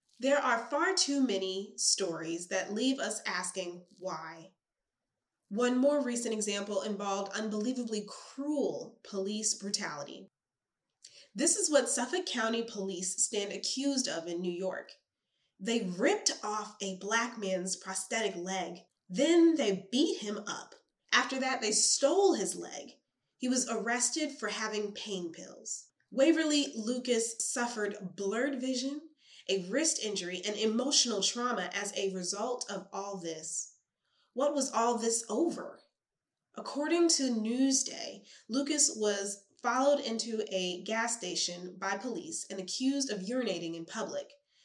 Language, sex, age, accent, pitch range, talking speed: English, female, 20-39, American, 195-265 Hz, 130 wpm